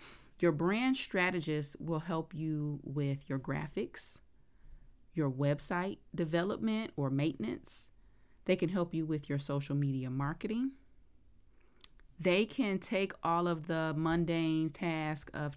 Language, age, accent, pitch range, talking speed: English, 30-49, American, 140-170 Hz, 125 wpm